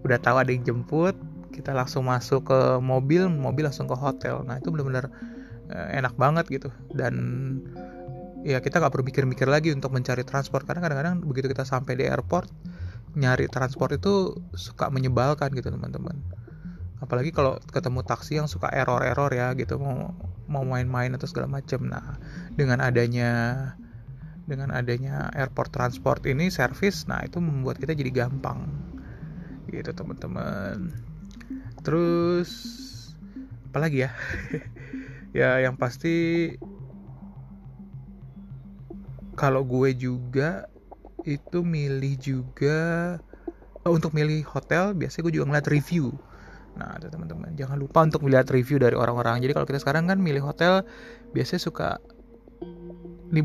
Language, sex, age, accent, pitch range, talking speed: Indonesian, male, 20-39, native, 125-160 Hz, 130 wpm